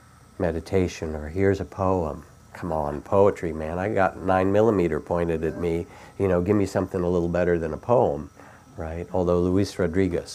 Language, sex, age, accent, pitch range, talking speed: English, male, 50-69, American, 85-100 Hz, 180 wpm